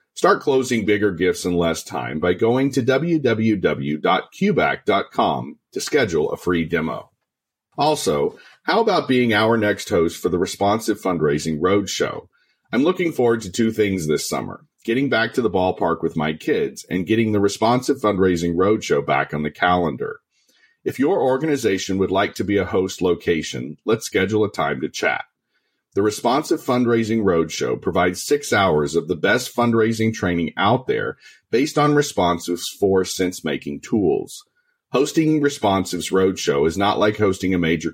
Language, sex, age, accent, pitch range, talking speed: English, male, 40-59, American, 90-130 Hz, 155 wpm